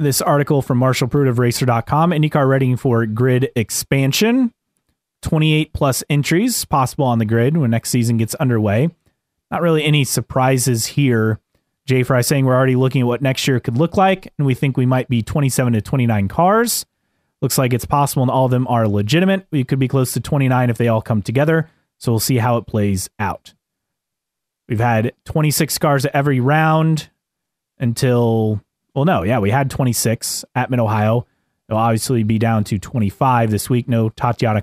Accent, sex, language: American, male, English